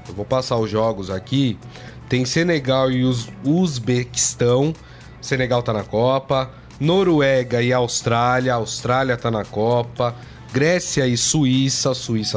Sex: male